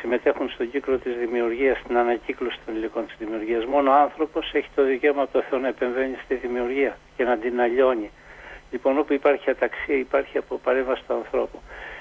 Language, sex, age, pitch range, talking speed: Greek, male, 60-79, 130-155 Hz, 180 wpm